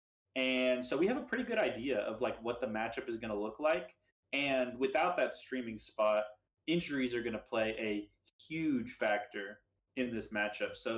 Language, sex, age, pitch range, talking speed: English, male, 20-39, 105-130 Hz, 190 wpm